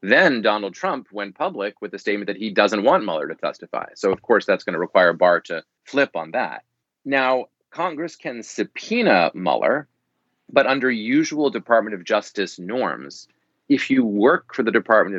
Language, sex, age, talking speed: English, male, 30-49, 180 wpm